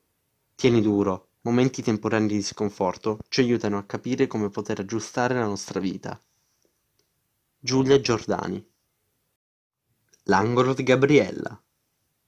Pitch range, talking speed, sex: 100-125 Hz, 105 wpm, male